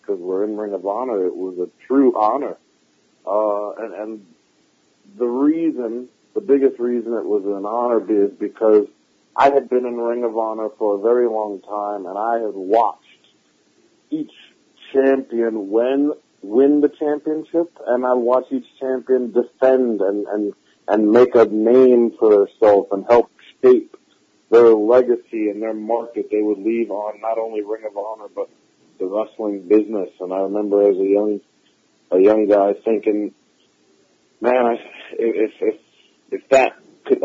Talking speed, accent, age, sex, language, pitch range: 165 wpm, American, 50-69, male, English, 105-125 Hz